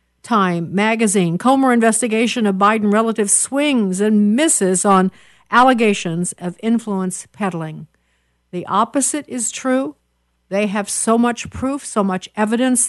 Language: English